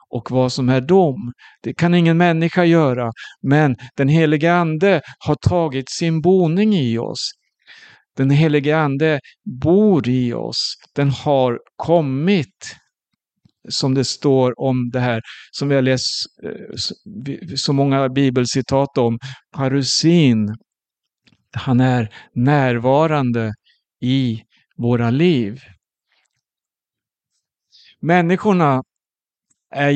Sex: male